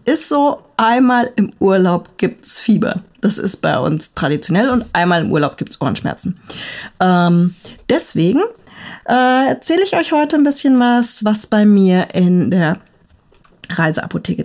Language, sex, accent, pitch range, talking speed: German, female, German, 185-245 Hz, 145 wpm